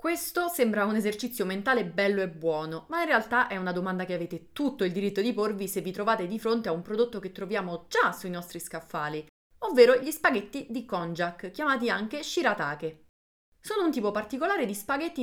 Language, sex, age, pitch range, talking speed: Italian, female, 30-49, 180-250 Hz, 195 wpm